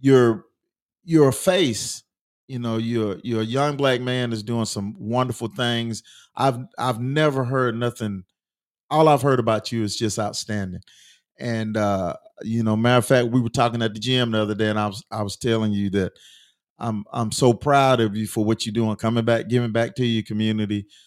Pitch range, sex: 110-130 Hz, male